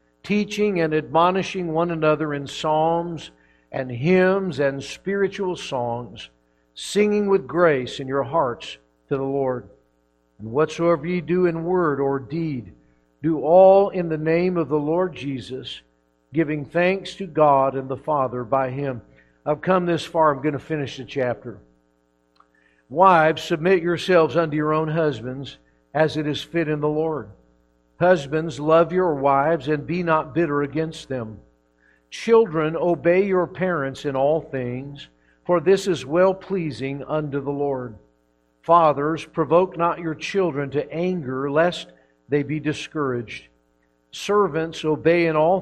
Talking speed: 145 wpm